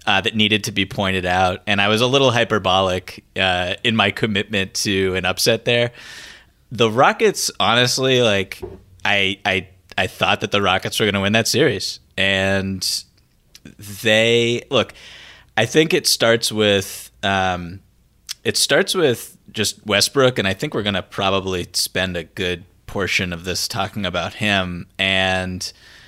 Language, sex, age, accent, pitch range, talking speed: English, male, 20-39, American, 95-120 Hz, 160 wpm